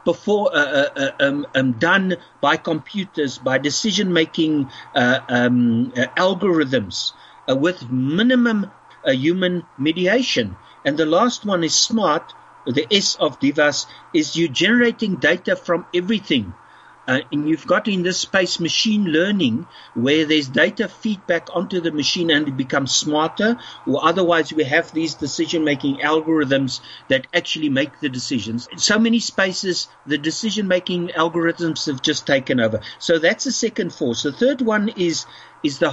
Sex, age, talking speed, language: male, 50-69, 150 wpm, English